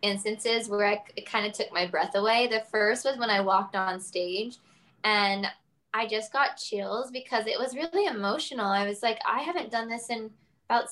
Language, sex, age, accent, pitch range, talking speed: English, female, 10-29, American, 195-245 Hz, 200 wpm